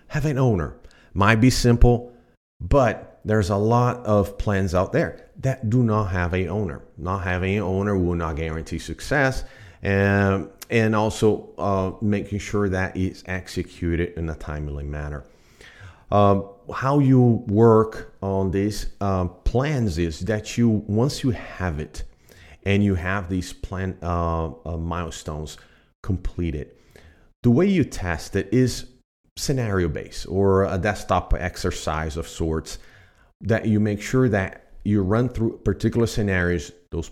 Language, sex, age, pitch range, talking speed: English, male, 40-59, 85-110 Hz, 145 wpm